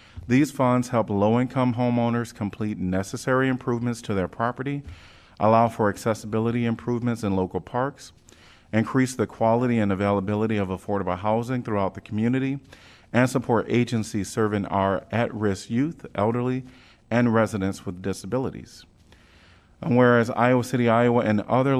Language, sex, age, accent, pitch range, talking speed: English, male, 40-59, American, 95-120 Hz, 130 wpm